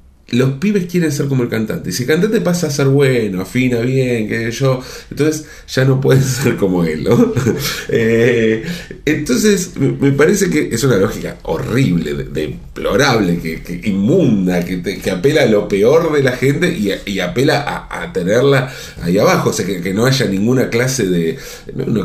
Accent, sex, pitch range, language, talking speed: Argentinian, male, 90-140 Hz, Spanish, 185 wpm